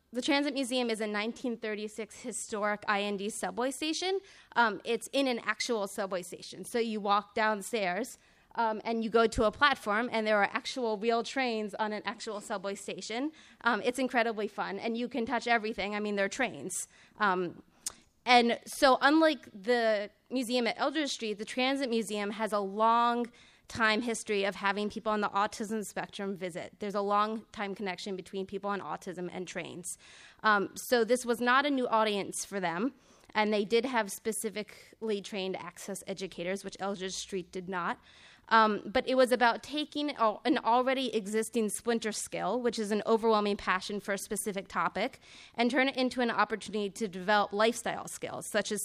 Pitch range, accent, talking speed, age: 200-240 Hz, American, 175 wpm, 20-39